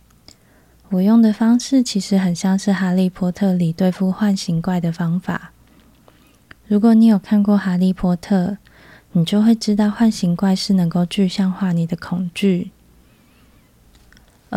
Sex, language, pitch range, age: female, Chinese, 175-205 Hz, 20-39